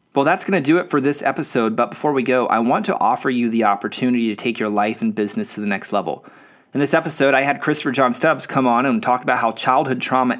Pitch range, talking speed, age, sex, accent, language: 110-140 Hz, 265 wpm, 30-49, male, American, English